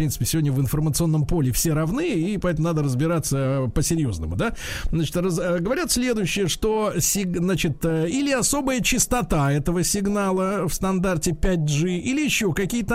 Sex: male